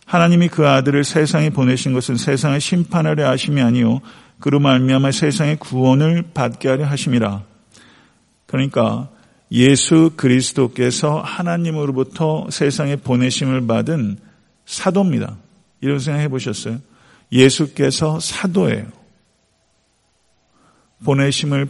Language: Korean